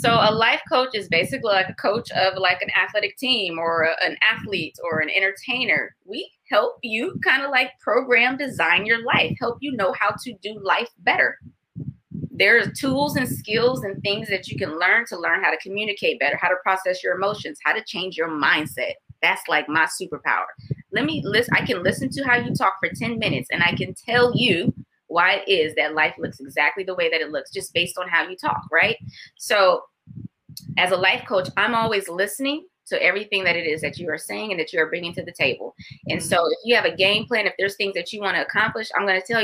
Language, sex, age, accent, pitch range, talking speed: English, female, 20-39, American, 175-225 Hz, 230 wpm